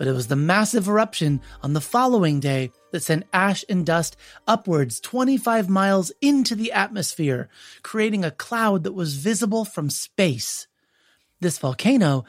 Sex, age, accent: male, 30-49, American